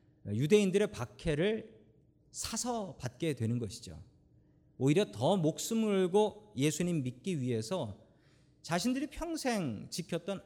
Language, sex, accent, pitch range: Korean, male, native, 120-185 Hz